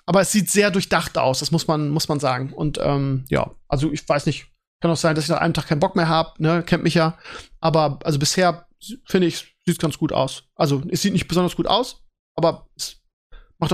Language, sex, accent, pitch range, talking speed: German, male, German, 160-210 Hz, 235 wpm